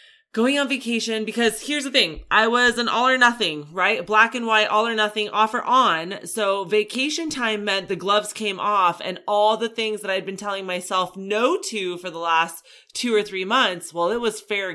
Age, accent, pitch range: 30-49, American, 160-220 Hz